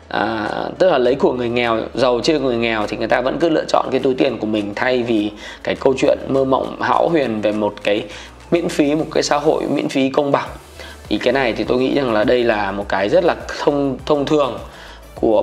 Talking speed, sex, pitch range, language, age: 245 wpm, male, 120-155 Hz, Vietnamese, 20-39